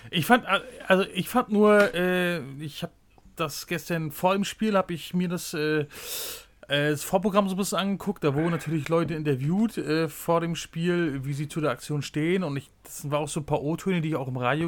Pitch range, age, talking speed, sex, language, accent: 150-200 Hz, 30-49, 210 wpm, male, German, German